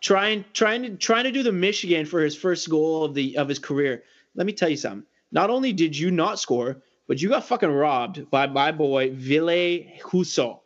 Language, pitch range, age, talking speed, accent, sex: English, 145-195 Hz, 20-39, 215 wpm, American, male